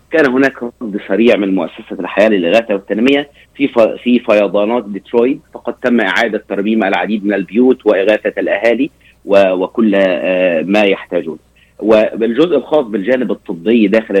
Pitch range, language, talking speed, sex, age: 100-125 Hz, Arabic, 135 wpm, male, 30-49